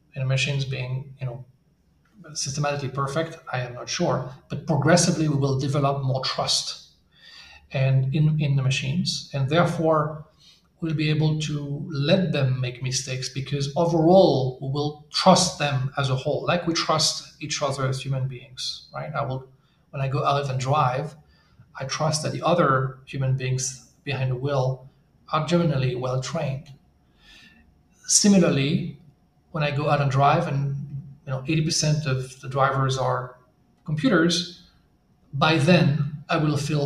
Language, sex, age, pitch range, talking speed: English, male, 40-59, 135-165 Hz, 155 wpm